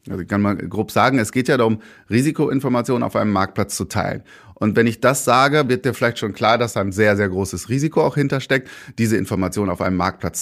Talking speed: 230 wpm